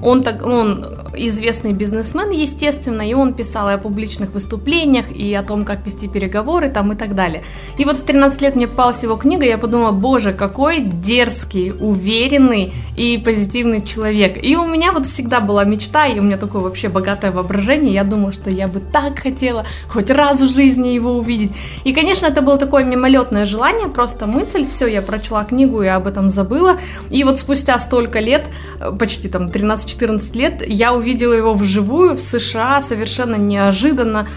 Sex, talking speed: female, 185 wpm